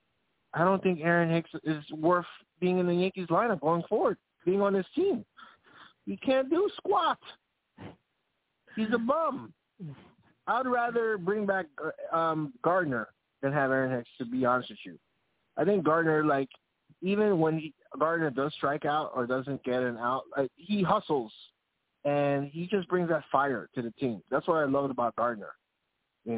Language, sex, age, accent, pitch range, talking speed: English, male, 20-39, American, 130-175 Hz, 170 wpm